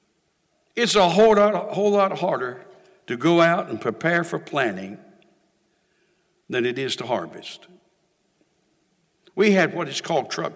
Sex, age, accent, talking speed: male, 60-79, American, 135 wpm